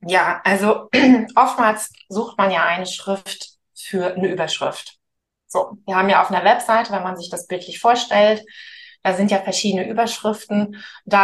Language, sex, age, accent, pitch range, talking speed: German, female, 20-39, German, 185-235 Hz, 160 wpm